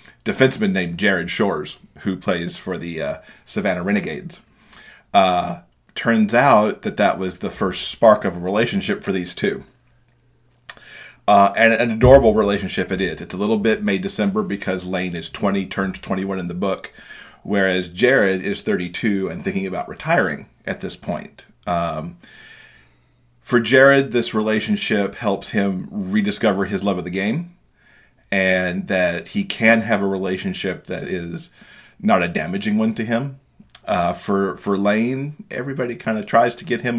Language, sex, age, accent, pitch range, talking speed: English, male, 30-49, American, 95-120 Hz, 155 wpm